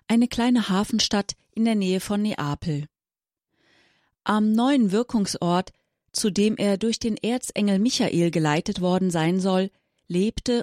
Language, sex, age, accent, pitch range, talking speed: German, female, 30-49, German, 175-220 Hz, 130 wpm